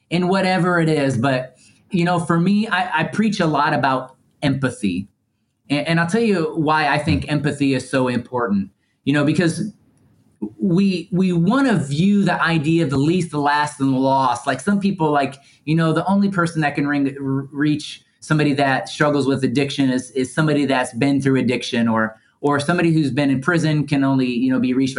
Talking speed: 200 wpm